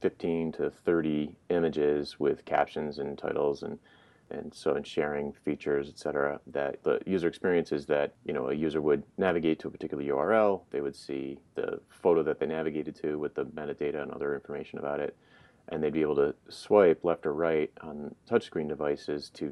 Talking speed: 185 wpm